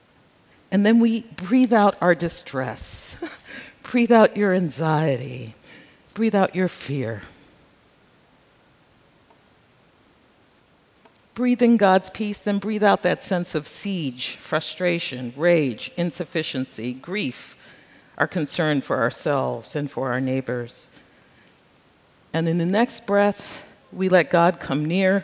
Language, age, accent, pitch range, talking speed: English, 50-69, American, 155-225 Hz, 115 wpm